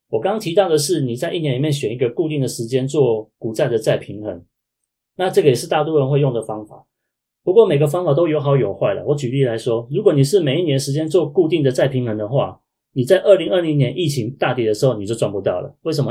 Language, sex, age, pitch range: Chinese, male, 30-49, 125-170 Hz